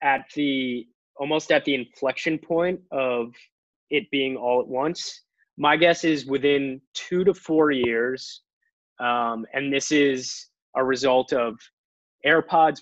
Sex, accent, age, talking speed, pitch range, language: male, American, 20-39, 135 wpm, 120-155 Hz, English